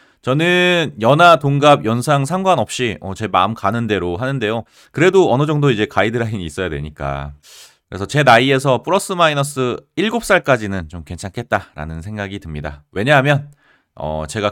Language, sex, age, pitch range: Korean, male, 30-49, 90-140 Hz